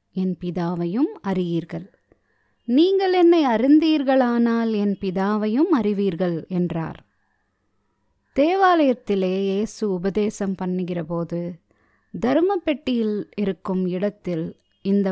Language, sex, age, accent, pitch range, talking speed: Tamil, female, 20-39, native, 180-260 Hz, 70 wpm